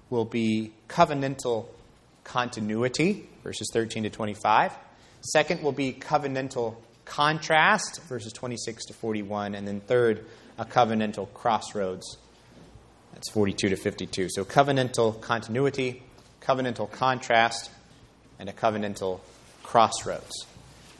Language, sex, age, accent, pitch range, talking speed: English, male, 30-49, American, 110-135 Hz, 105 wpm